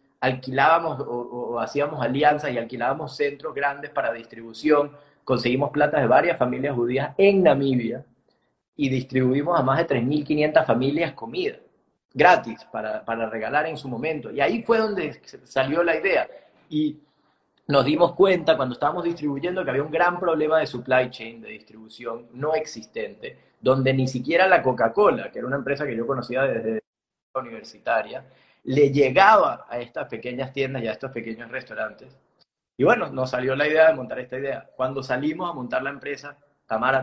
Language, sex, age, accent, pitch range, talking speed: Spanish, male, 30-49, Argentinian, 120-150 Hz, 165 wpm